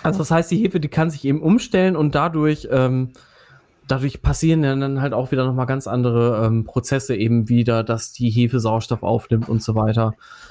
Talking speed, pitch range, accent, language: 195 wpm, 125-165 Hz, German, German